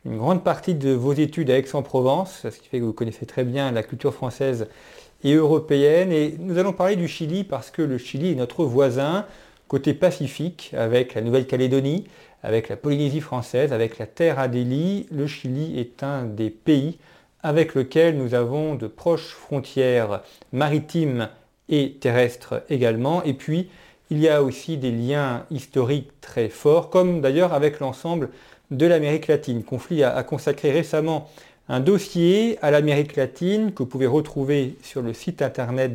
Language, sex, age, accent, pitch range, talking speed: French, male, 40-59, French, 130-165 Hz, 165 wpm